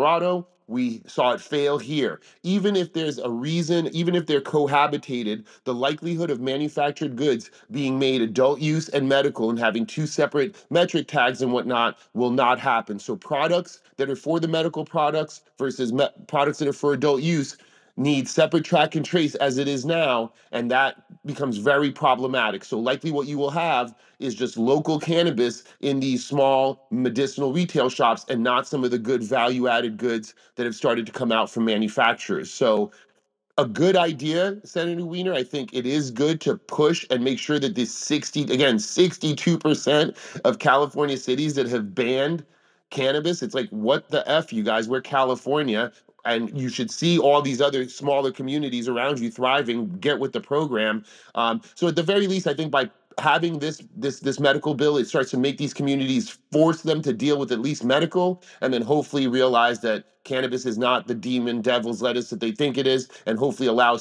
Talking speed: 185 wpm